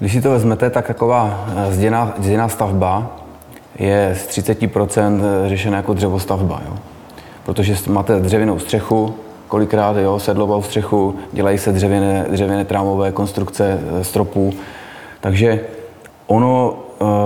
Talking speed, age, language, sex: 115 wpm, 30-49, Czech, male